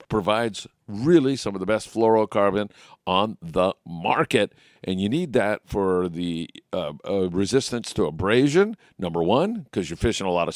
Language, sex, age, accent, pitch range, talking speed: English, male, 50-69, American, 95-115 Hz, 165 wpm